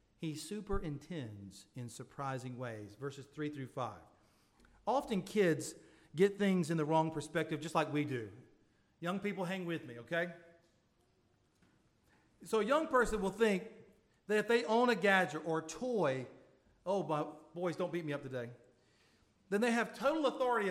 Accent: American